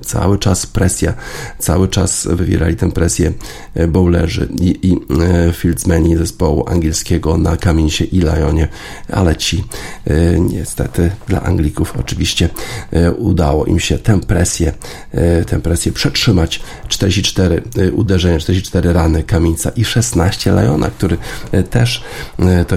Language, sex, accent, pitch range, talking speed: Polish, male, native, 80-95 Hz, 115 wpm